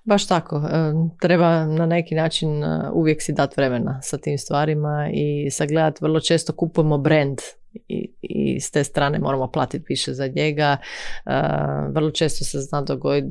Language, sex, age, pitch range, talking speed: Croatian, female, 30-49, 135-155 Hz, 160 wpm